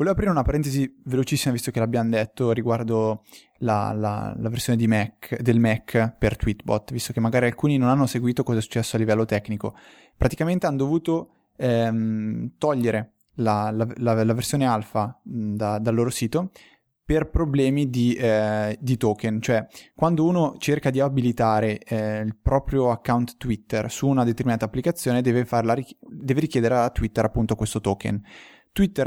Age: 20-39